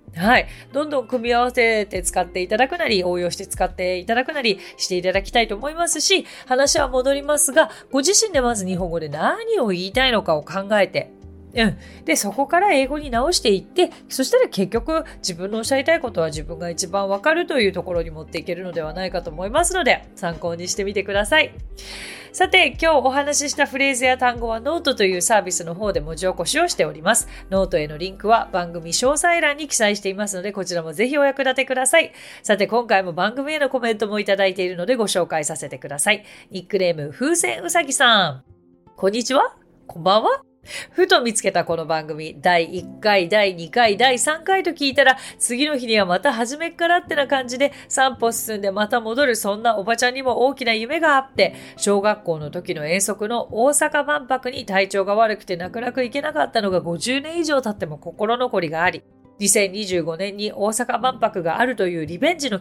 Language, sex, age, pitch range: Japanese, female, 30-49, 185-275 Hz